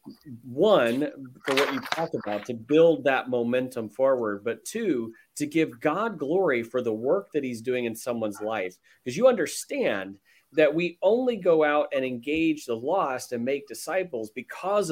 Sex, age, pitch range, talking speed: male, 30-49, 105-135 Hz, 170 wpm